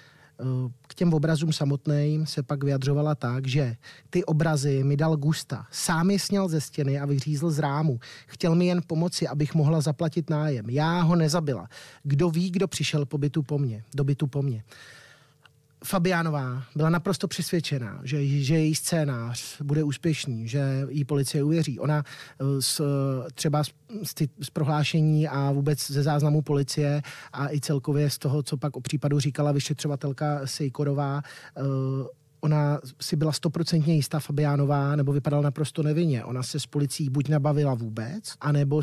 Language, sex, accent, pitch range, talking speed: Czech, male, native, 135-155 Hz, 160 wpm